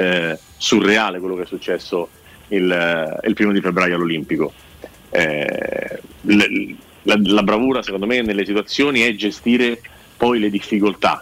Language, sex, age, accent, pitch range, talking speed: Italian, male, 30-49, native, 100-125 Hz, 145 wpm